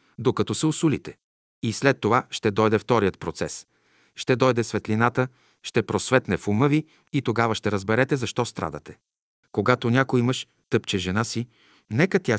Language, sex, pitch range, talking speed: Bulgarian, male, 110-140 Hz, 155 wpm